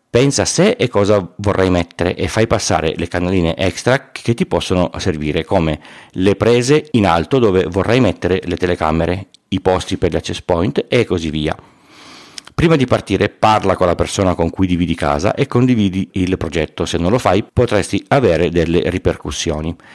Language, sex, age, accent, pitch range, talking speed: Italian, male, 40-59, native, 85-105 Hz, 175 wpm